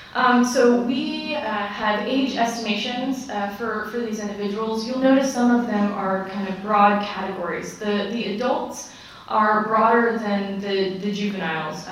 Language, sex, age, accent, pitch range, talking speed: English, female, 20-39, American, 195-230 Hz, 155 wpm